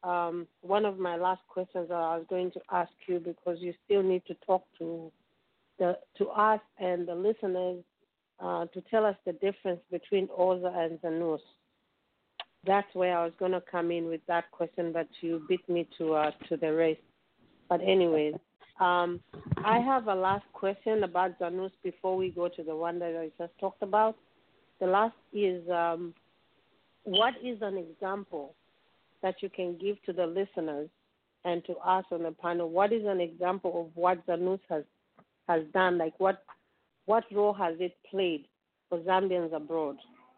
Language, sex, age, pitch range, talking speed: English, female, 40-59, 165-195 Hz, 175 wpm